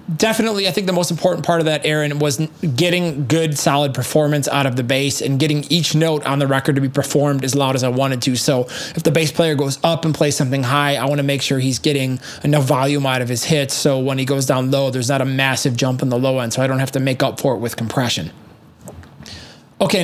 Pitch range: 135-165 Hz